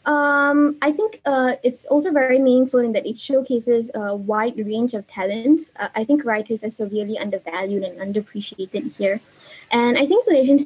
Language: English